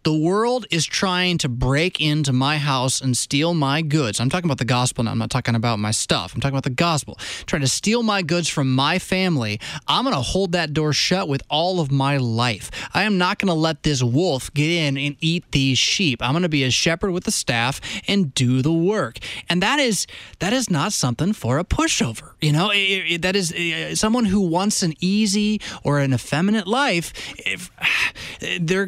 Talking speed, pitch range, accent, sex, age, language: 215 wpm, 135-190 Hz, American, male, 20-39, English